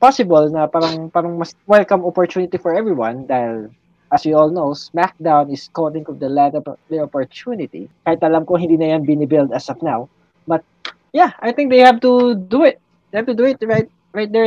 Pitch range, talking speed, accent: 155-210 Hz, 195 wpm, Filipino